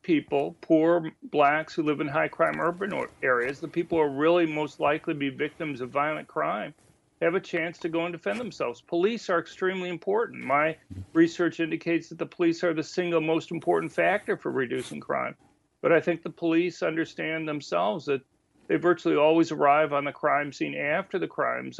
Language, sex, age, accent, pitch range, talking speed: English, male, 40-59, American, 150-175 Hz, 195 wpm